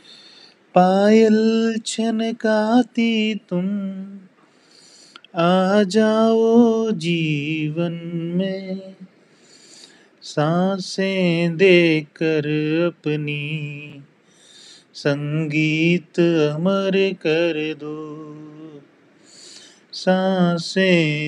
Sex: male